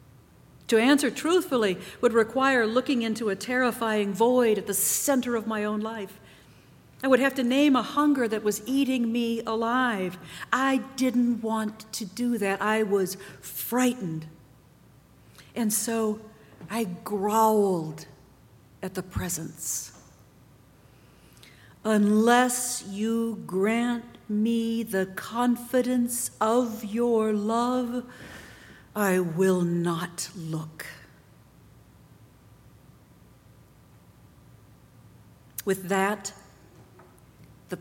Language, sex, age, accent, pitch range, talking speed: English, female, 60-79, American, 190-250 Hz, 95 wpm